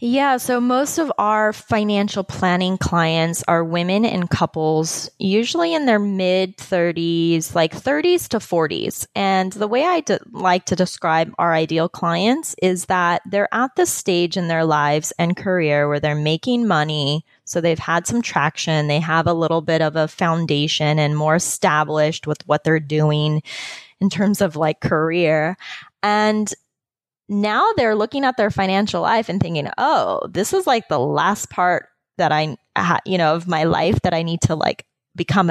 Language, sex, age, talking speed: English, female, 20-39, 170 wpm